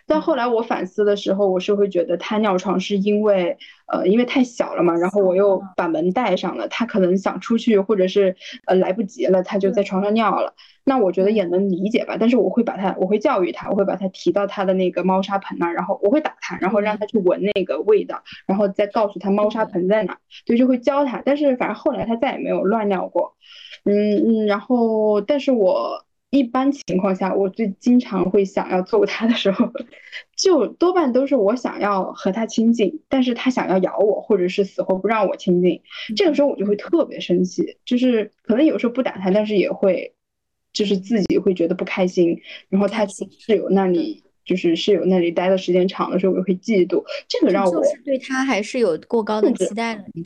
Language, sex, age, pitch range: Chinese, female, 10-29, 190-245 Hz